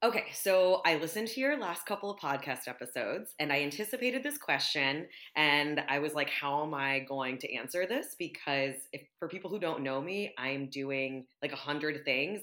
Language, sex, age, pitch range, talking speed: English, female, 20-39, 135-175 Hz, 195 wpm